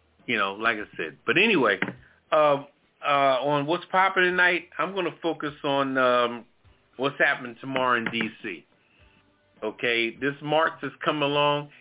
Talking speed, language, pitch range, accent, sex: 150 wpm, English, 120-175 Hz, American, male